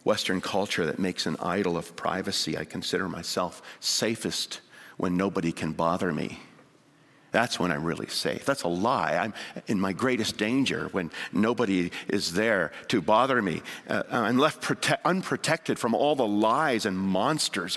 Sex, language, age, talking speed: male, English, 50-69, 160 wpm